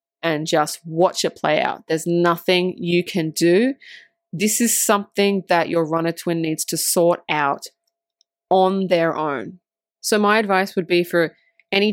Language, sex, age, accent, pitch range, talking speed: English, female, 20-39, Australian, 165-210 Hz, 160 wpm